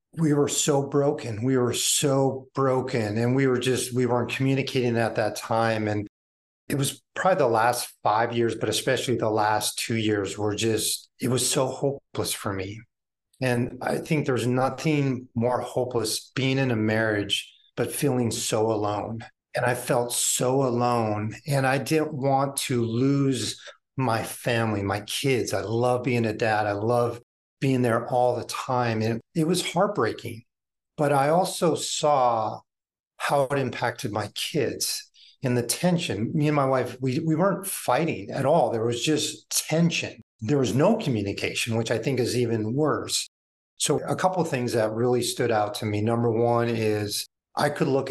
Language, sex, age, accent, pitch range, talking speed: English, male, 40-59, American, 110-135 Hz, 175 wpm